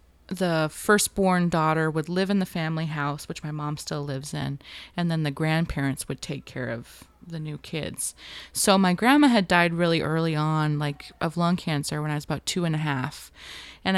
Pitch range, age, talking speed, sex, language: 145-175 Hz, 20-39, 200 wpm, female, English